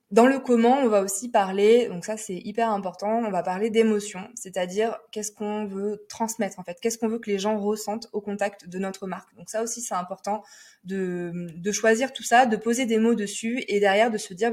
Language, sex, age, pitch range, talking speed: French, female, 20-39, 185-220 Hz, 225 wpm